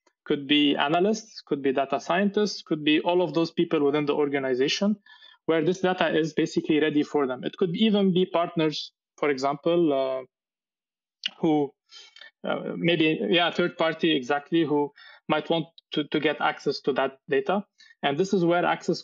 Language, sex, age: English, male, 20-39